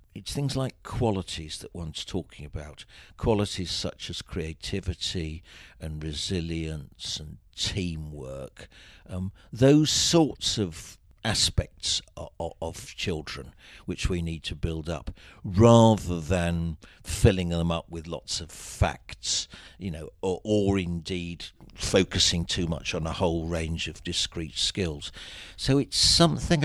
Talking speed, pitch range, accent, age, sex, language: 125 wpm, 80-95 Hz, British, 50-69, male, English